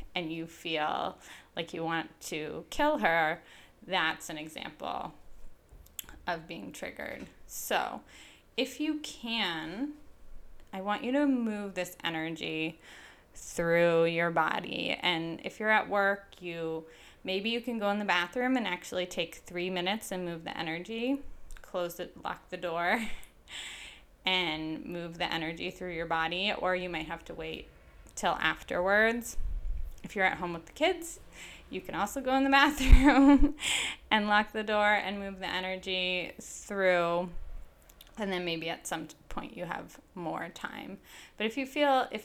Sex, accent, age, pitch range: female, American, 10-29, 165-210 Hz